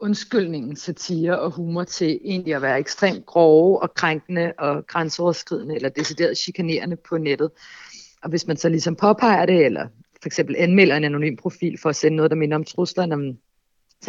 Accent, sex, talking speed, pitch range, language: native, female, 180 wpm, 155-185 Hz, Danish